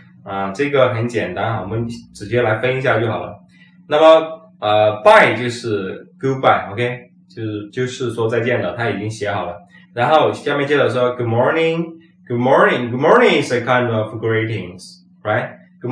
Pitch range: 105-165 Hz